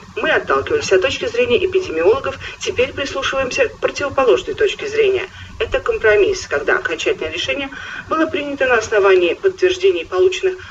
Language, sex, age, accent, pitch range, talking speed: Russian, female, 40-59, native, 365-455 Hz, 130 wpm